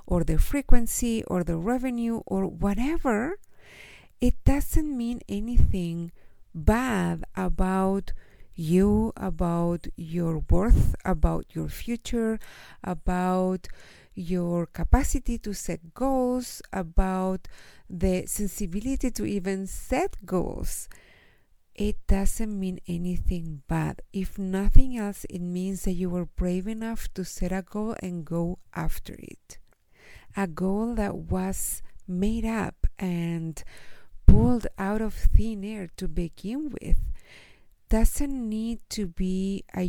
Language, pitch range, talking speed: English, 170-220 Hz, 115 wpm